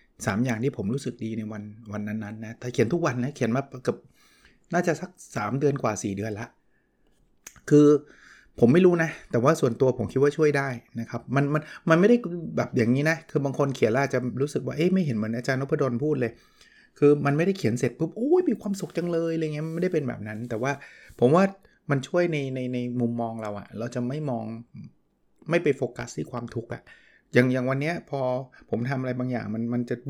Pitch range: 120-150 Hz